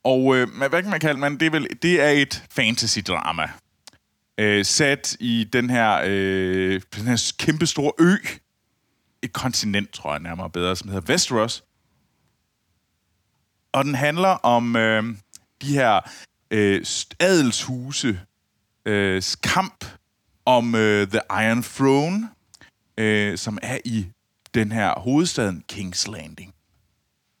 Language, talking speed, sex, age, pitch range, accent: Danish, 120 wpm, male, 30-49, 100-130 Hz, native